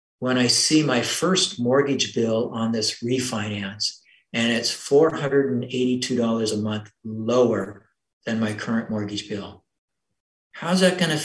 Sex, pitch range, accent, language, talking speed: male, 120-180 Hz, American, English, 135 wpm